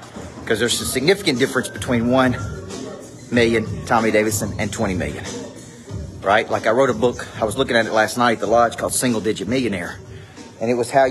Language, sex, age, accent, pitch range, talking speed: English, male, 40-59, American, 105-130 Hz, 200 wpm